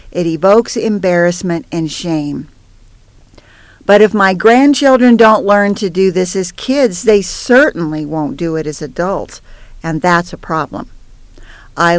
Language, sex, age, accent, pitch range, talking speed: English, female, 50-69, American, 165-230 Hz, 140 wpm